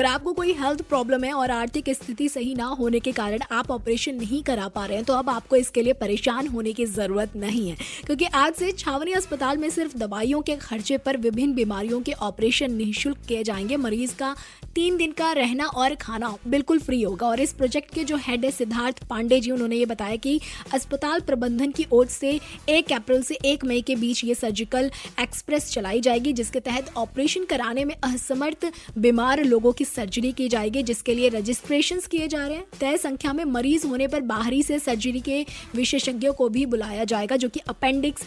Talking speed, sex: 200 wpm, female